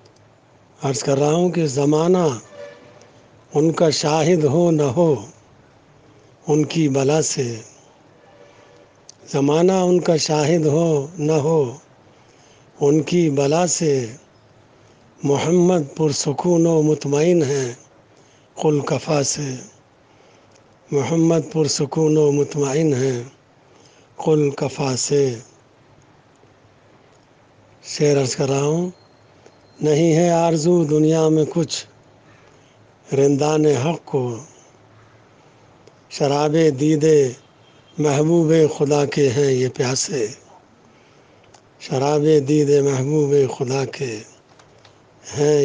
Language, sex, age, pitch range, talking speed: Urdu, male, 60-79, 130-155 Hz, 90 wpm